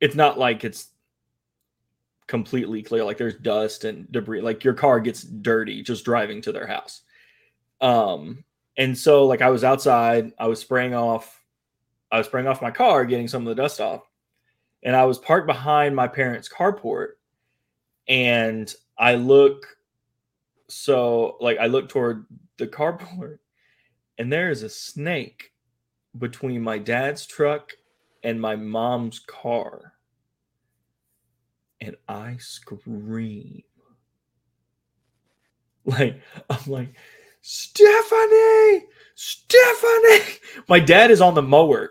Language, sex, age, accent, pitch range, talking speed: English, male, 20-39, American, 120-165 Hz, 125 wpm